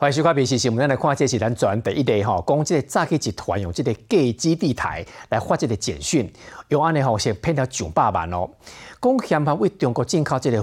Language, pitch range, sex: Chinese, 100-145 Hz, male